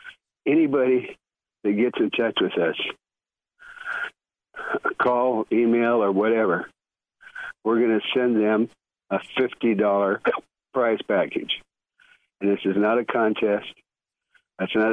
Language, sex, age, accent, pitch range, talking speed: English, male, 60-79, American, 105-160 Hz, 115 wpm